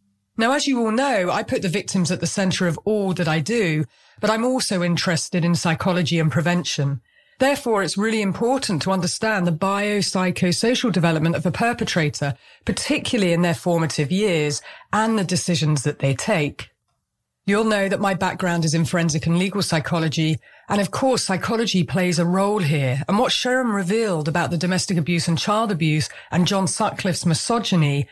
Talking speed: 175 wpm